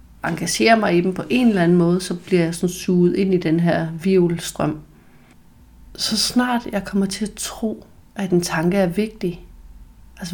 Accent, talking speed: native, 180 wpm